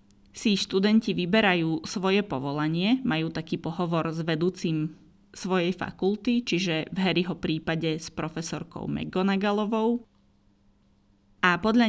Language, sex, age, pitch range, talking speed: Slovak, female, 20-39, 160-200 Hz, 105 wpm